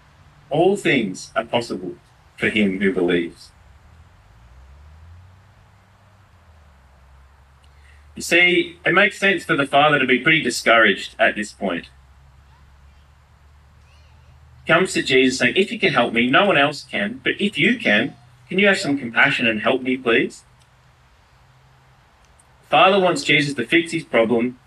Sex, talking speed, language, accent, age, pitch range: male, 145 wpm, English, Australian, 30-49, 90-140 Hz